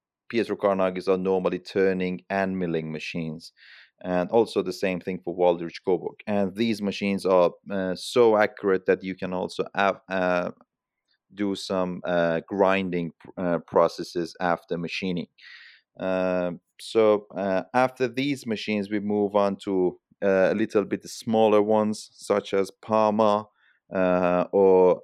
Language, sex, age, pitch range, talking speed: English, male, 30-49, 90-100 Hz, 135 wpm